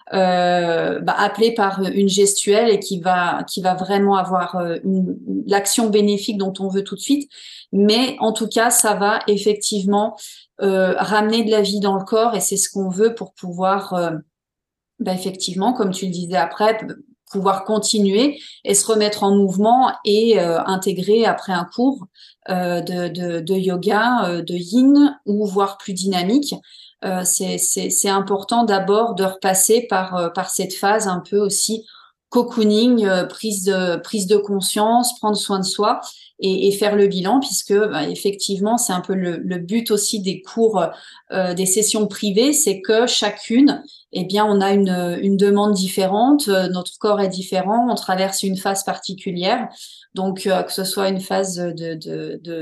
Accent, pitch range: French, 190-215 Hz